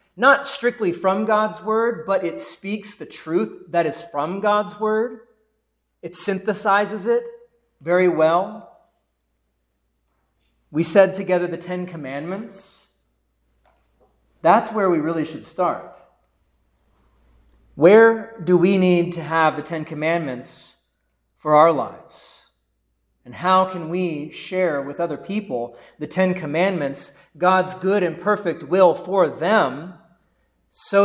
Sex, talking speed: male, 120 wpm